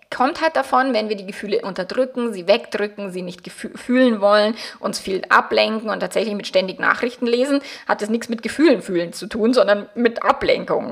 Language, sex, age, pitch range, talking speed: German, female, 20-39, 200-250 Hz, 190 wpm